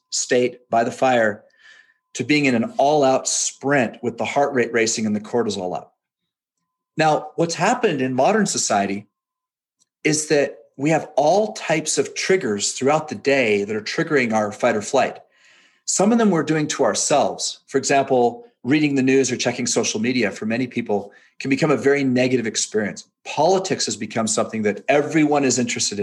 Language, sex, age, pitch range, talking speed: English, male, 40-59, 120-160 Hz, 175 wpm